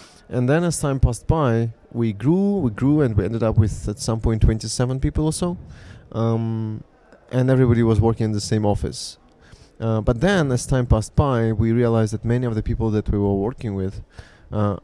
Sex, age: male, 20-39